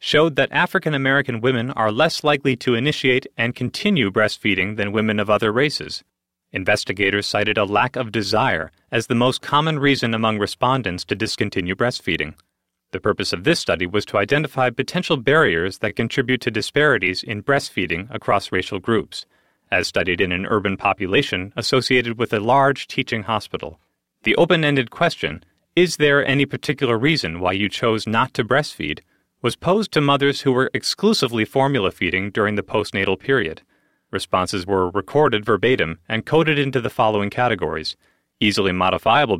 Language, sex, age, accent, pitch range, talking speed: English, male, 30-49, American, 100-135 Hz, 155 wpm